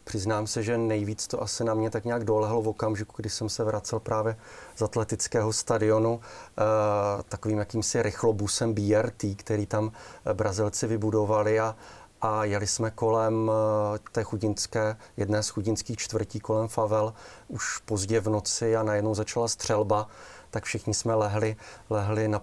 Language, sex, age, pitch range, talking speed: Slovak, male, 30-49, 105-115 Hz, 150 wpm